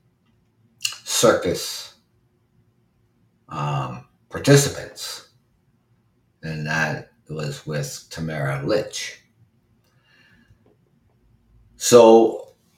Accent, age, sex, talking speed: American, 50-69, male, 45 wpm